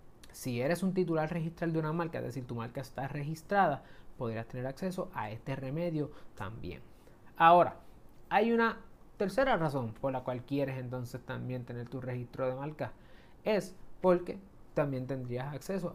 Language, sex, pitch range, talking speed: Spanish, male, 130-185 Hz, 160 wpm